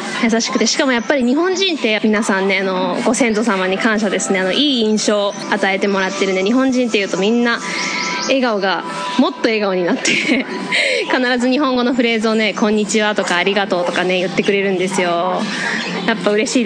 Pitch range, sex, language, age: 195-255 Hz, female, Japanese, 20-39